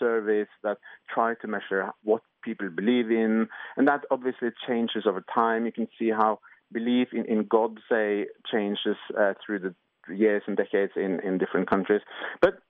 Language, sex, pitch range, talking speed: English, male, 110-150 Hz, 170 wpm